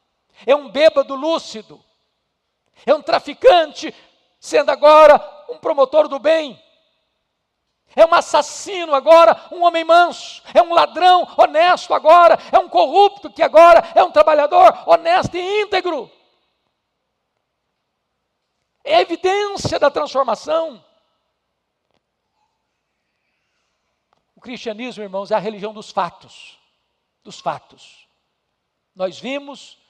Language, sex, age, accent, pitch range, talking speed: Portuguese, male, 60-79, Brazilian, 205-320 Hz, 105 wpm